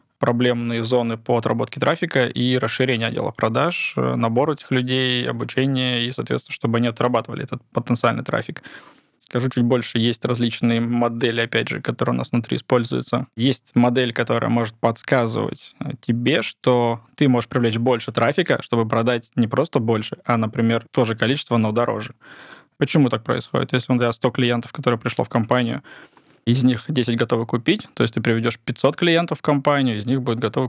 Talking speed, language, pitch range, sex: 170 wpm, Russian, 115-130 Hz, male